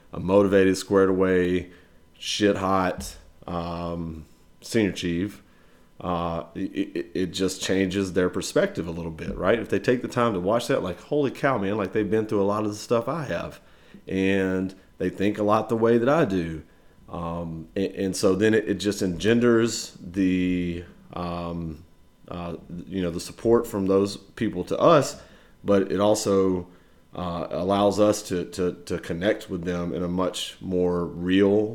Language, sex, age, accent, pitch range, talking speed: English, male, 30-49, American, 85-100 Hz, 170 wpm